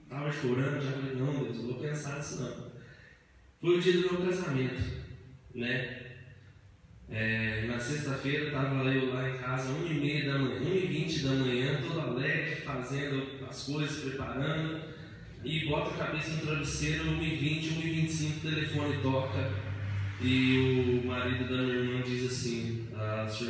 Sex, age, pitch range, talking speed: male, 20-39, 115-160 Hz, 155 wpm